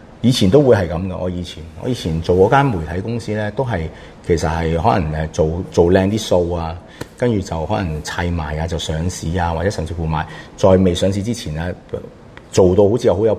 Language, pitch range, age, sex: Chinese, 85-105 Hz, 30-49, male